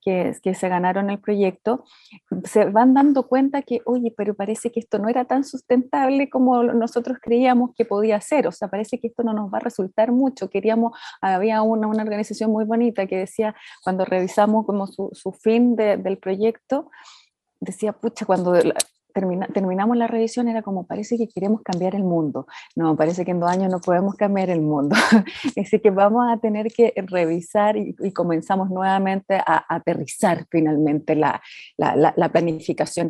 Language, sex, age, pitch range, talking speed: Spanish, female, 30-49, 180-225 Hz, 185 wpm